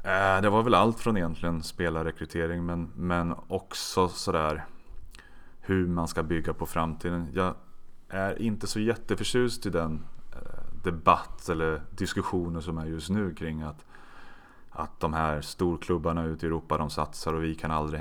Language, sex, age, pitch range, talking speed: Swedish, male, 30-49, 80-90 Hz, 155 wpm